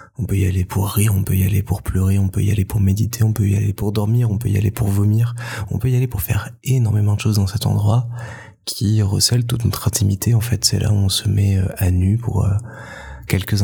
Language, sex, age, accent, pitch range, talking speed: French, male, 20-39, French, 95-115 Hz, 260 wpm